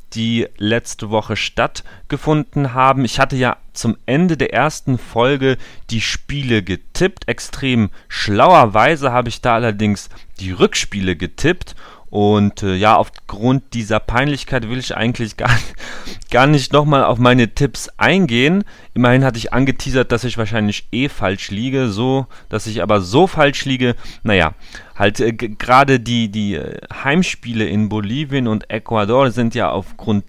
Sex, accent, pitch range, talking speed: male, German, 105-130 Hz, 145 wpm